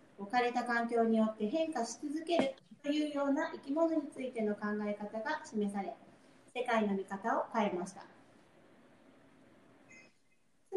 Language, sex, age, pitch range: Japanese, female, 40-59, 220-300 Hz